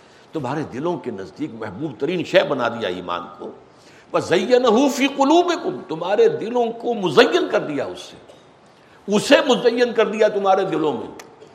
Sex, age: male, 60-79